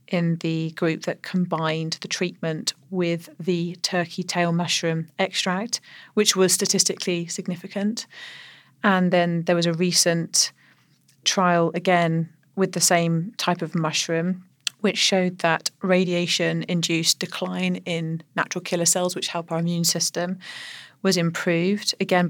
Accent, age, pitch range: British, 30-49, 170-190 Hz